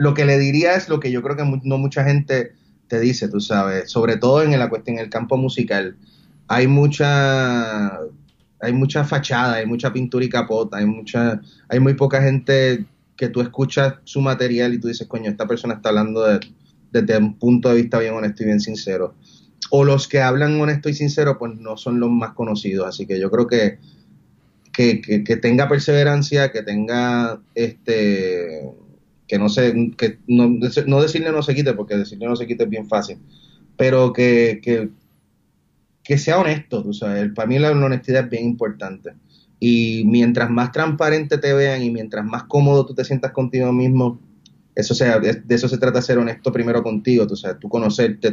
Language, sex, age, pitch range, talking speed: Spanish, male, 30-49, 110-135 Hz, 190 wpm